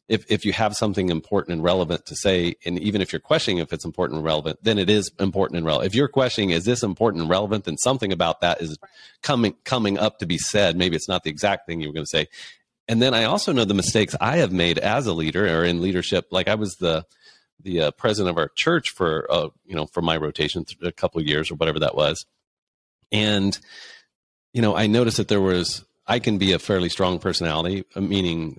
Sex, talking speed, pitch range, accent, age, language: male, 235 wpm, 85-110 Hz, American, 40-59, English